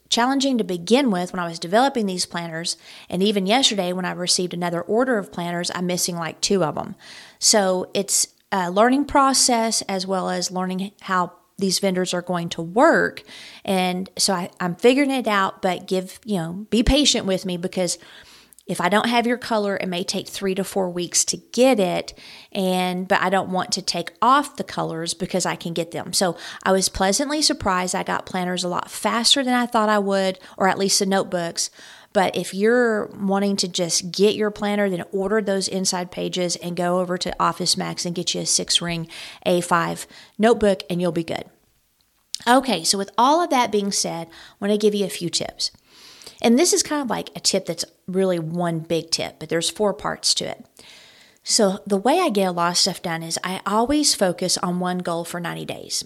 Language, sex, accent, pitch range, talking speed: English, female, American, 175-215 Hz, 210 wpm